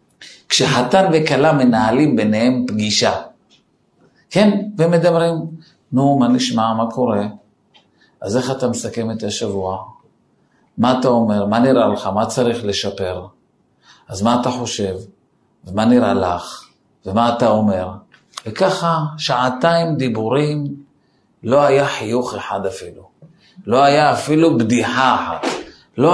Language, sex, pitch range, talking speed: Hebrew, male, 125-215 Hz, 115 wpm